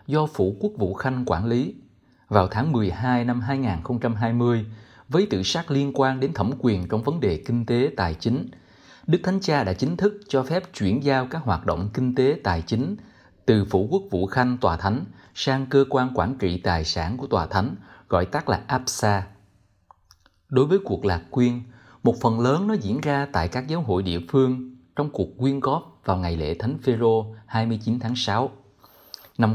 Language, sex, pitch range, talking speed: Vietnamese, male, 100-135 Hz, 195 wpm